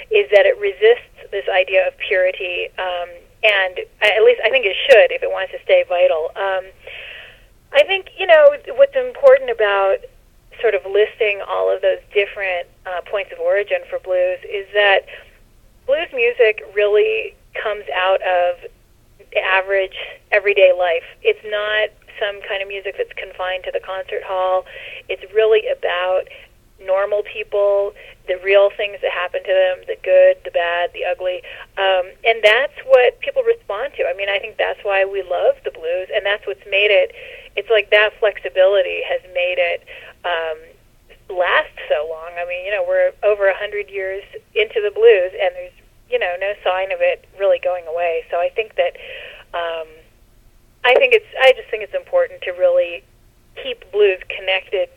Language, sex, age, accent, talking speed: English, female, 30-49, American, 170 wpm